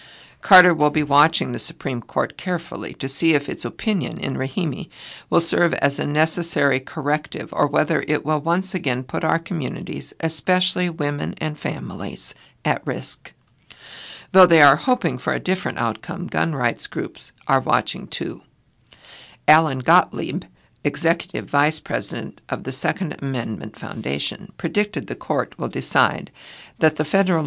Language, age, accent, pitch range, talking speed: English, 60-79, American, 135-170 Hz, 150 wpm